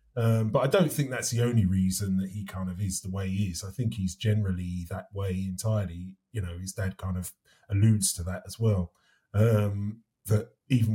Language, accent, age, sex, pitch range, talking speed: English, British, 30-49, male, 100-125 Hz, 215 wpm